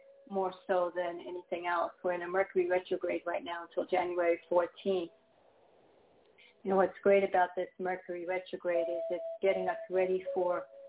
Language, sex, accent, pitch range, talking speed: English, female, American, 180-195 Hz, 165 wpm